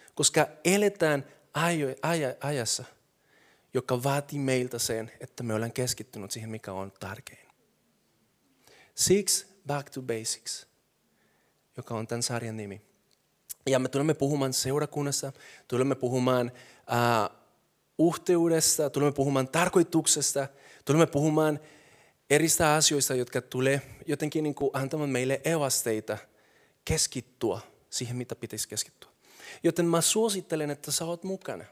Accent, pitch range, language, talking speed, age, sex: native, 125-150 Hz, Finnish, 110 wpm, 30-49, male